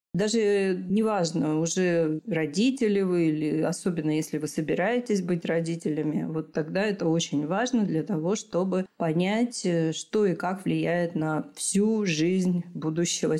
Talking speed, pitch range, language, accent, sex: 130 wpm, 160-200 Hz, Russian, native, female